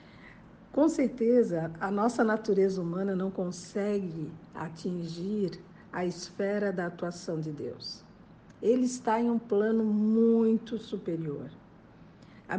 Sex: female